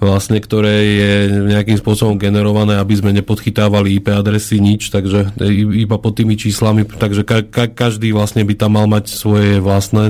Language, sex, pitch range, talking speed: Slovak, male, 100-105 Hz, 160 wpm